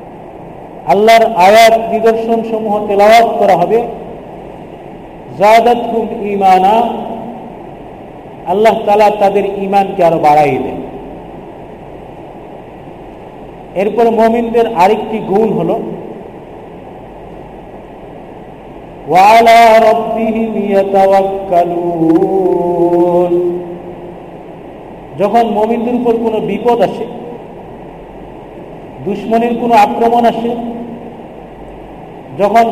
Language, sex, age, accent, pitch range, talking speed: Bengali, male, 50-69, native, 180-230 Hz, 40 wpm